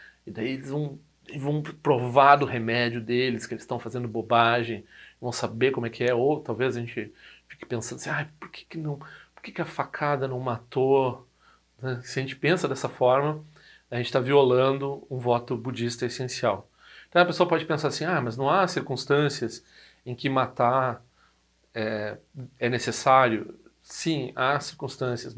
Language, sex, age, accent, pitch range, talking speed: Portuguese, male, 40-59, Brazilian, 120-140 Hz, 175 wpm